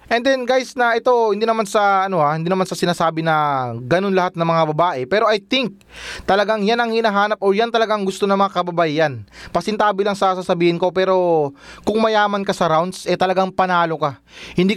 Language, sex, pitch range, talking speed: Filipino, male, 170-215 Hz, 205 wpm